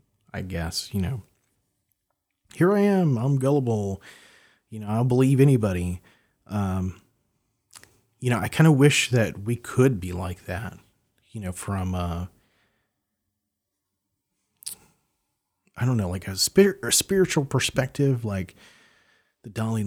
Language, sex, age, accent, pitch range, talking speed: English, male, 30-49, American, 90-115 Hz, 135 wpm